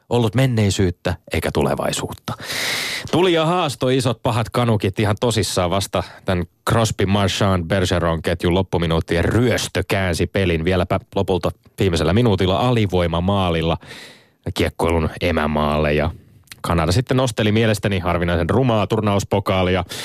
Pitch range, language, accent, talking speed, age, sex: 85-115 Hz, Finnish, native, 110 wpm, 30-49, male